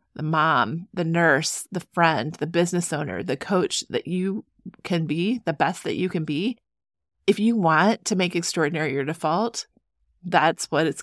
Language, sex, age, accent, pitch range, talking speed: English, female, 30-49, American, 155-195 Hz, 175 wpm